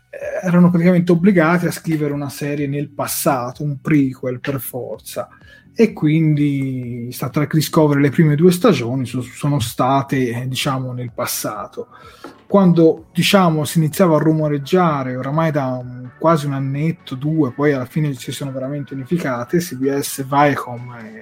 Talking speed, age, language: 145 wpm, 30-49, Italian